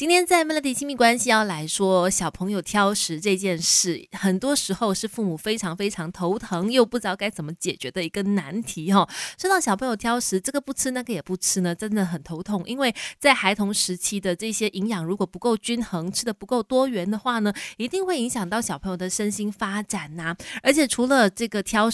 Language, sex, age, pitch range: Chinese, female, 20-39, 185-240 Hz